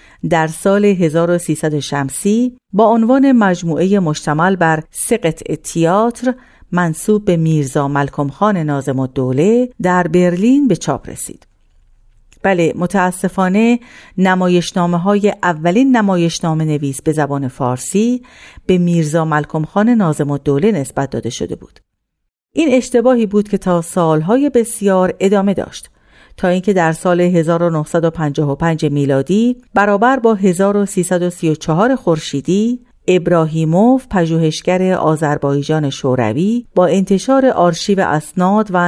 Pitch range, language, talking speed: 155-210 Hz, Persian, 110 wpm